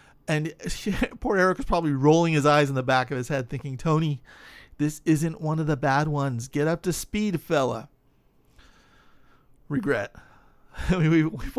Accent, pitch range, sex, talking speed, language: American, 130-175 Hz, male, 155 wpm, English